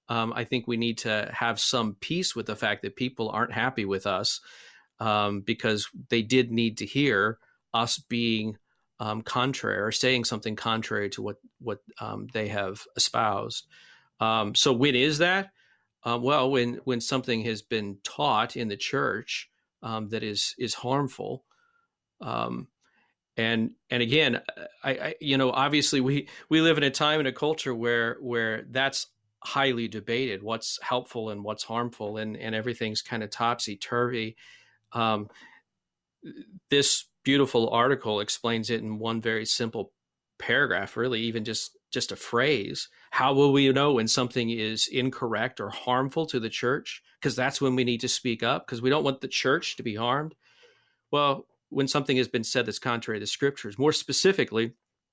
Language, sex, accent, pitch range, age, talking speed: English, male, American, 110-135 Hz, 40-59, 165 wpm